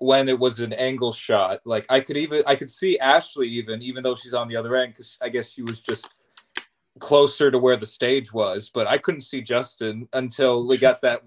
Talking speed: 230 wpm